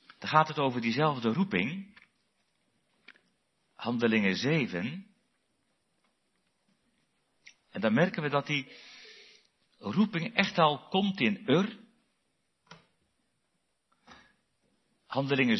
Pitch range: 115-190 Hz